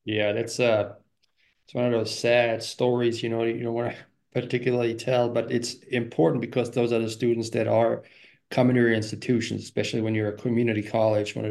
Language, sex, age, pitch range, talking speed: English, male, 20-39, 110-125 Hz, 205 wpm